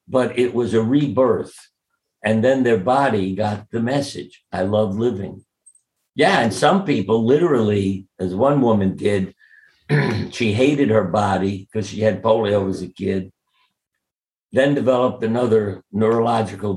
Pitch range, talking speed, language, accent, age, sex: 100-120 Hz, 140 wpm, English, American, 60-79, male